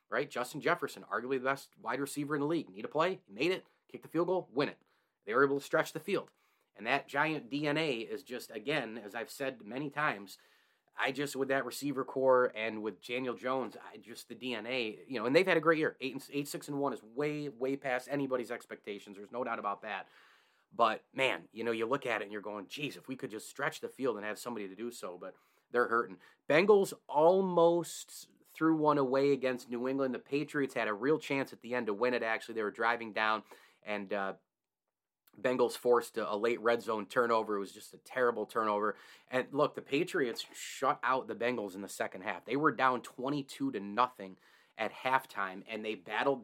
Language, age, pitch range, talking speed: English, 30-49, 115-140 Hz, 220 wpm